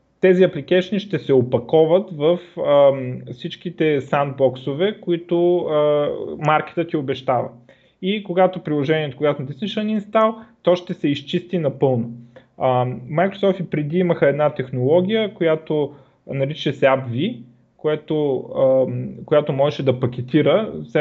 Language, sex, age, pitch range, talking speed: Bulgarian, male, 20-39, 130-170 Hz, 115 wpm